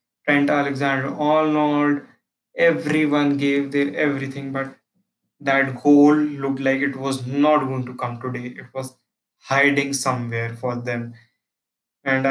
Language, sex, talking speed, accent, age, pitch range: English, male, 130 wpm, Indian, 20-39, 135-145 Hz